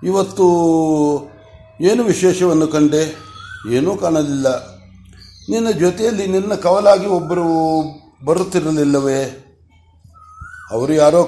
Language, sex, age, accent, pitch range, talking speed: Kannada, male, 60-79, native, 140-185 Hz, 75 wpm